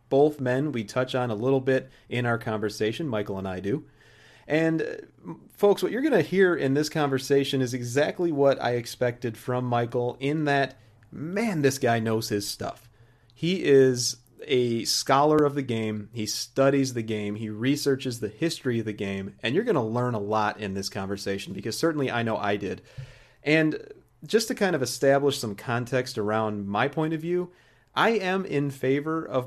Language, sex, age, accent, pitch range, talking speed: English, male, 30-49, American, 110-145 Hz, 185 wpm